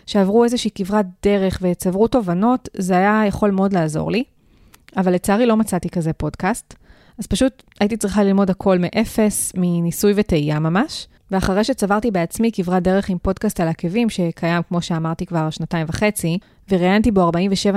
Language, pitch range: Hebrew, 180-220 Hz